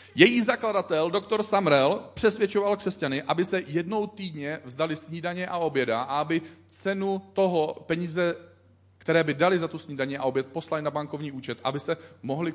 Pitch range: 120-165 Hz